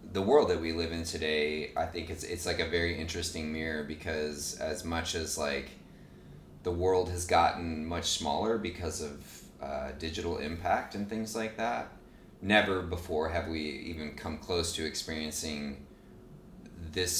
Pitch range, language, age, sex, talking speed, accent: 75-90 Hz, English, 30-49, male, 160 wpm, American